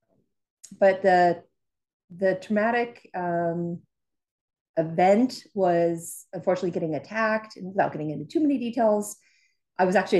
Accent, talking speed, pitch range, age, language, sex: American, 110 wpm, 160-215 Hz, 40-59, English, female